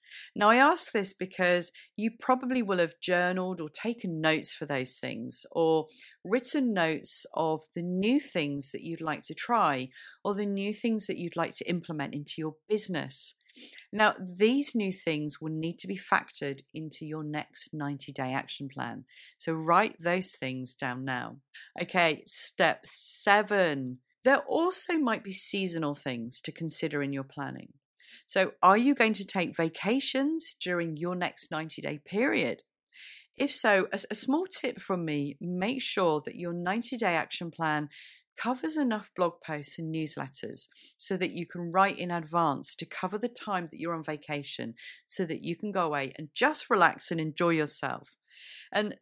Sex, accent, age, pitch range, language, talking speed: female, British, 40-59, 155-210 Hz, English, 170 wpm